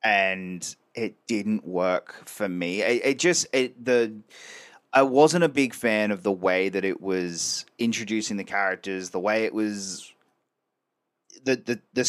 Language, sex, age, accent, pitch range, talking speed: English, male, 30-49, Australian, 95-115 Hz, 160 wpm